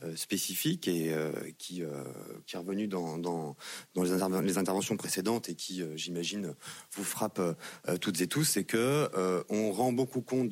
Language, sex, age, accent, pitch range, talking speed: French, male, 30-49, French, 85-110 Hz, 185 wpm